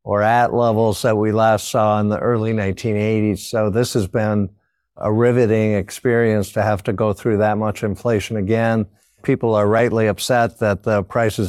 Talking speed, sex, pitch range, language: 180 wpm, male, 105-120 Hz, English